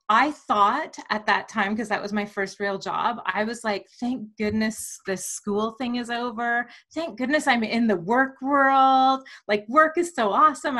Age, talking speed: 30-49, 190 wpm